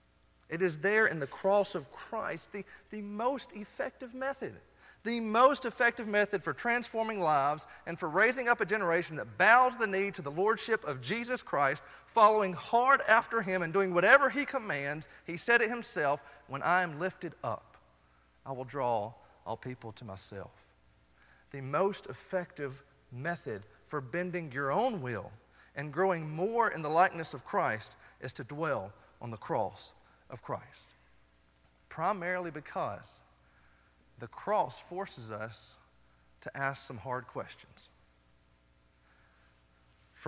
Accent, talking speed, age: American, 145 wpm, 40-59